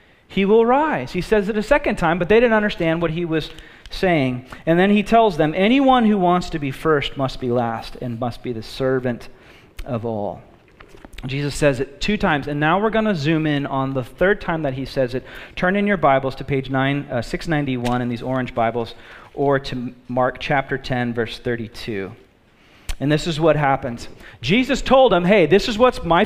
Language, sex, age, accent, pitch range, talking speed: English, male, 40-59, American, 135-200 Hz, 205 wpm